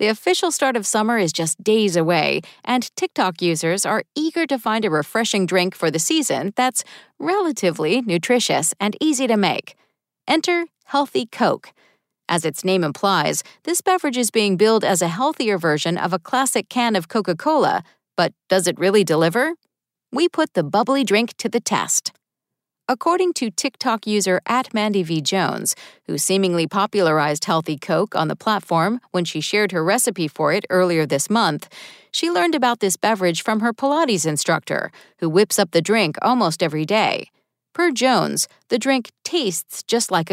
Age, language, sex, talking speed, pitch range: 40-59, English, female, 165 wpm, 180-260 Hz